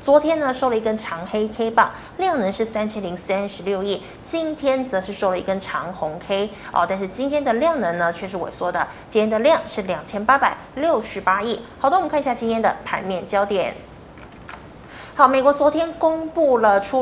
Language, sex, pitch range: Chinese, female, 200-270 Hz